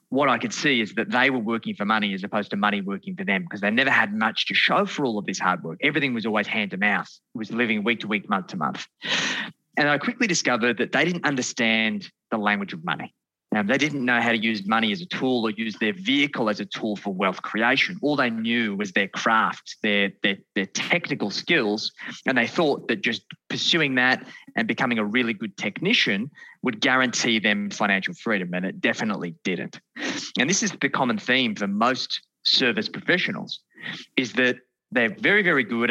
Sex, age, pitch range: male, 20-39, 110-170 Hz